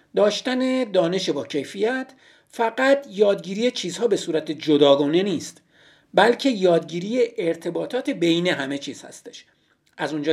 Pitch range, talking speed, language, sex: 155-245 Hz, 115 wpm, Persian, male